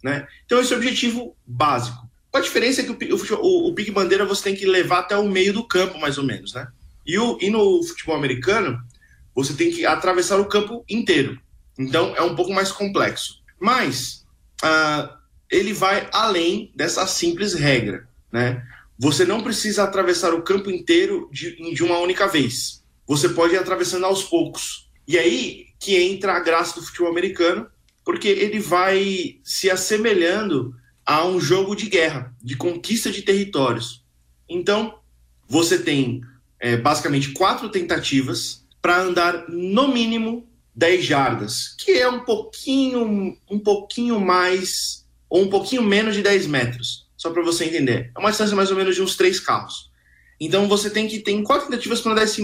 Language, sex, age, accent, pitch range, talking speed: Portuguese, male, 20-39, Brazilian, 155-210 Hz, 170 wpm